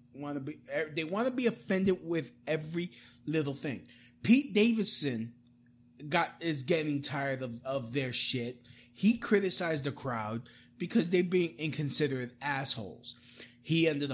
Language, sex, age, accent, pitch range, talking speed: English, male, 20-39, American, 120-175 Hz, 140 wpm